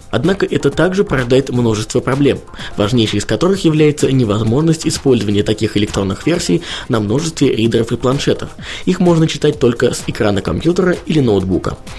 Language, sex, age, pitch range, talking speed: Russian, male, 20-39, 110-155 Hz, 145 wpm